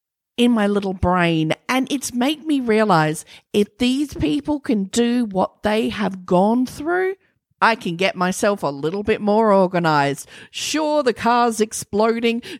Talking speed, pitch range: 150 wpm, 175-255 Hz